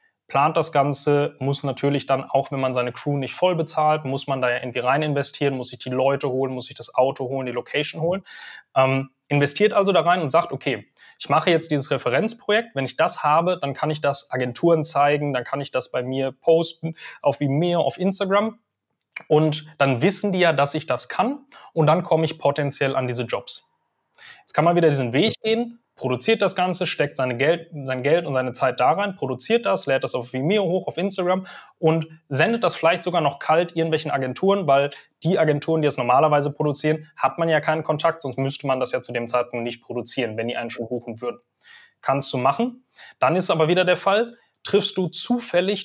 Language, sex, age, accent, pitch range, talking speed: German, male, 20-39, German, 135-180 Hz, 215 wpm